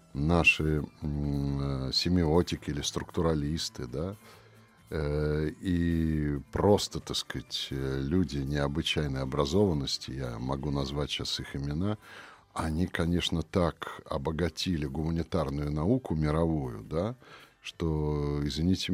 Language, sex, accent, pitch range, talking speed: Russian, male, native, 75-95 Hz, 90 wpm